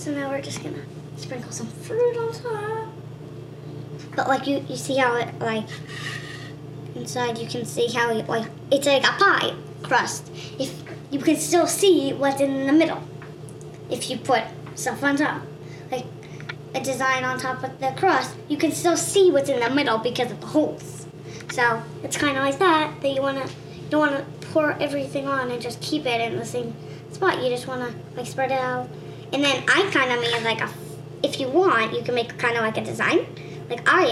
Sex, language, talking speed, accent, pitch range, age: male, English, 205 wpm, American, 235-305 Hz, 10-29